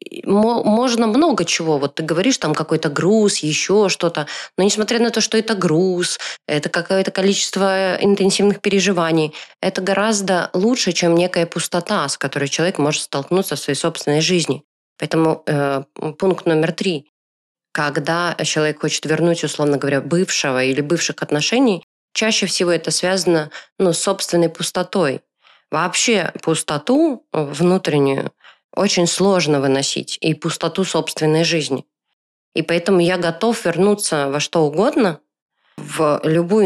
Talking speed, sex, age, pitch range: 135 wpm, female, 20-39, 155-195 Hz